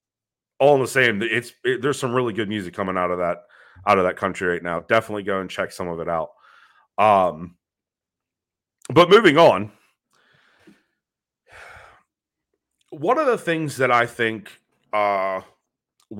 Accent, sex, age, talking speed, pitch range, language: American, male, 30-49, 150 wpm, 95-130 Hz, English